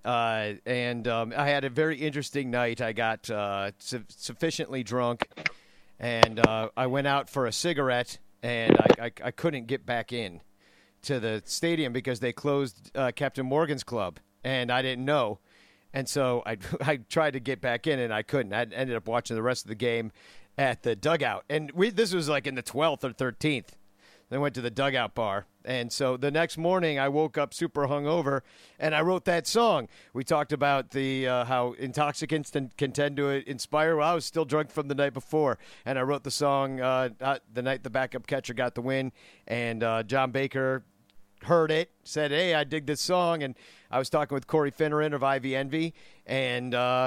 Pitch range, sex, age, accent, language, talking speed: 120-150 Hz, male, 50-69, American, English, 200 wpm